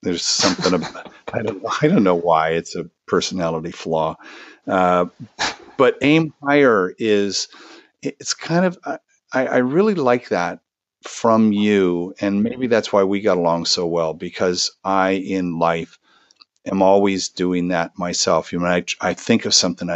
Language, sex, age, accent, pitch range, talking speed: English, male, 50-69, American, 90-115 Hz, 160 wpm